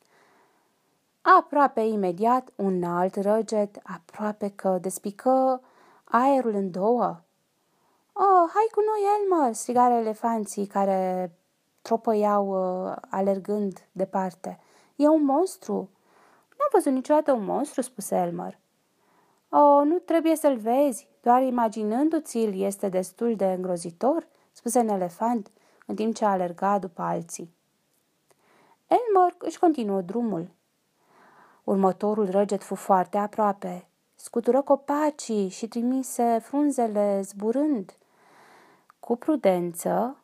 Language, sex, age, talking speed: Romanian, female, 20-39, 105 wpm